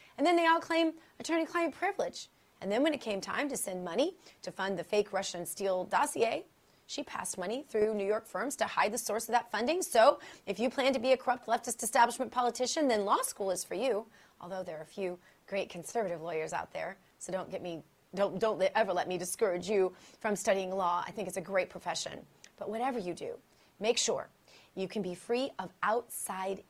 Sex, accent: female, American